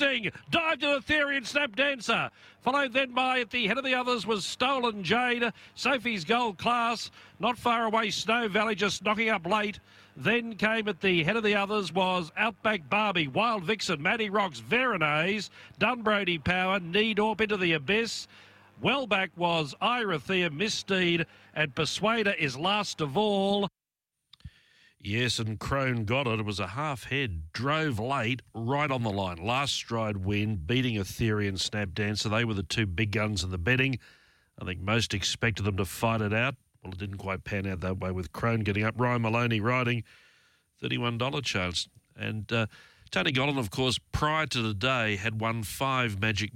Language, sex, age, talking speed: English, male, 50-69, 170 wpm